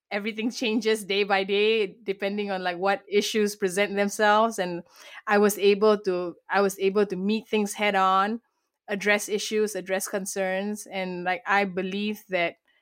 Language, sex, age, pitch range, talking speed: English, female, 20-39, 185-210 Hz, 155 wpm